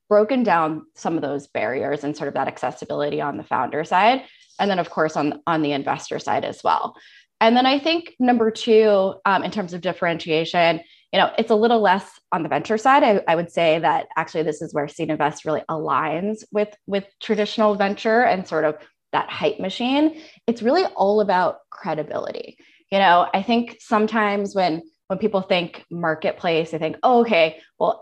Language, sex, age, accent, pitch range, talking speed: English, female, 20-39, American, 160-220 Hz, 195 wpm